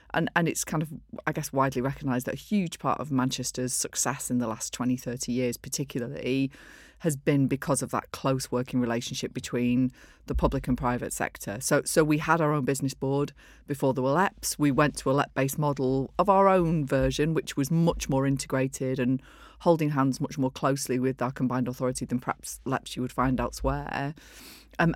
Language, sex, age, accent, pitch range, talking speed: English, female, 40-59, British, 130-150 Hz, 195 wpm